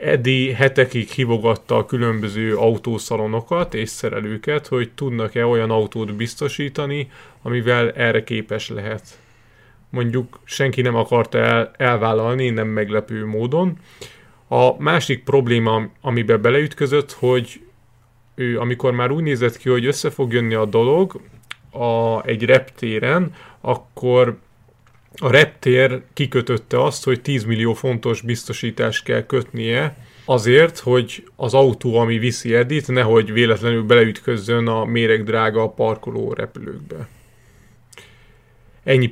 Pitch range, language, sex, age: 115-130 Hz, Hungarian, male, 30-49